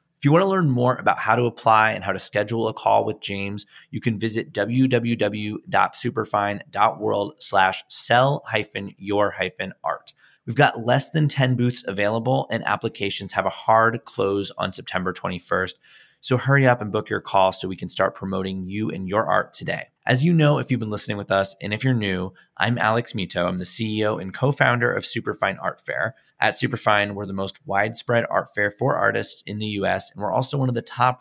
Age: 20-39